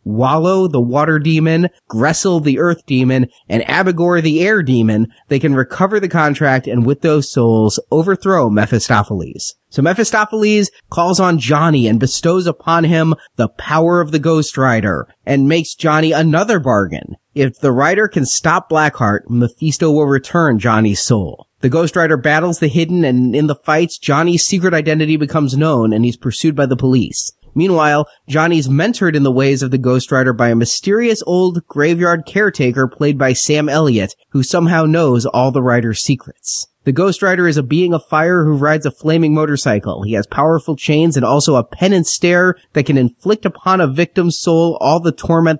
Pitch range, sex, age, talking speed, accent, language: 130-170 Hz, male, 30-49, 180 wpm, American, English